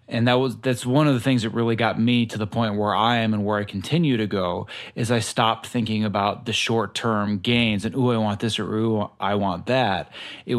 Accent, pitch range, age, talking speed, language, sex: American, 105-120 Hz, 30-49, 245 wpm, English, male